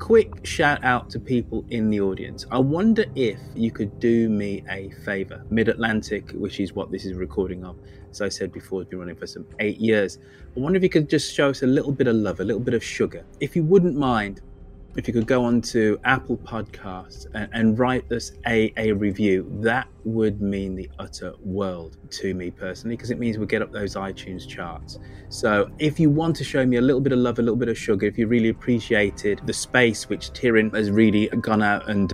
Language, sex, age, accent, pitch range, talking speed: English, male, 30-49, British, 95-120 Hz, 225 wpm